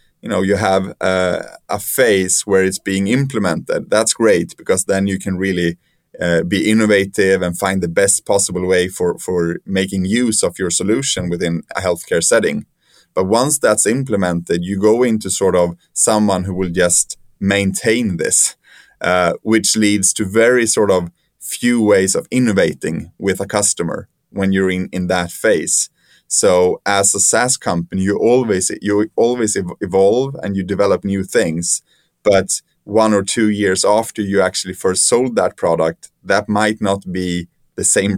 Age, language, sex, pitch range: 20-39, English, male, 90-105 Hz